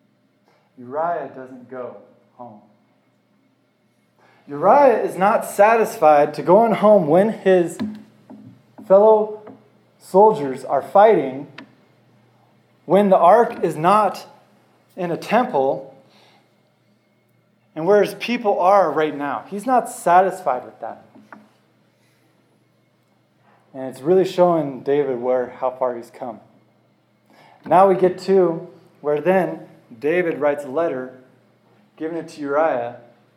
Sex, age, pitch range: male, 20-39, 135-190 Hz